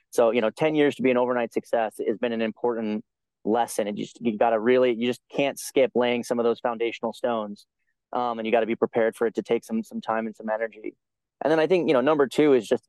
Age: 20-39